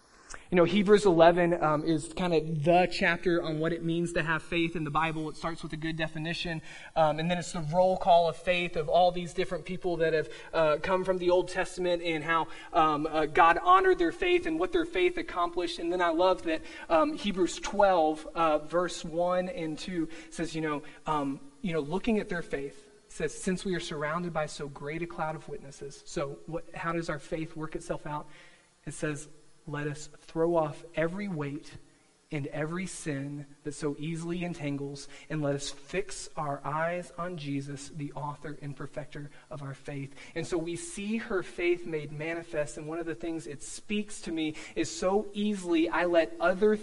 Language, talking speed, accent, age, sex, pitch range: English, 205 wpm, American, 20-39, male, 150-180 Hz